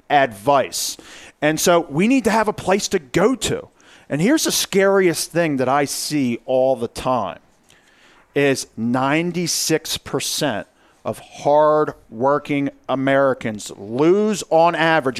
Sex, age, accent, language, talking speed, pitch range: male, 40-59, American, English, 120 wpm, 145-200 Hz